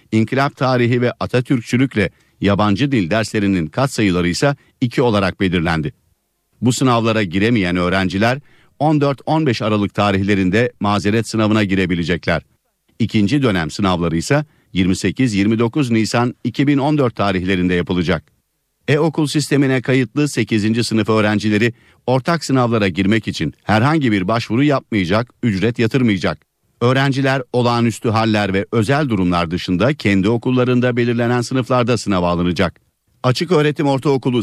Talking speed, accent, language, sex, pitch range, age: 110 wpm, native, Turkish, male, 100-130 Hz, 50-69